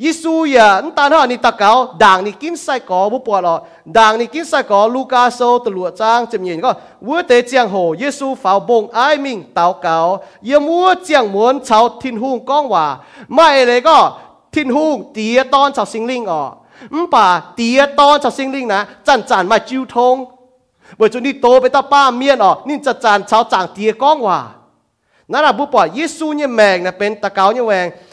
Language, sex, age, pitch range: English, male, 30-49, 205-275 Hz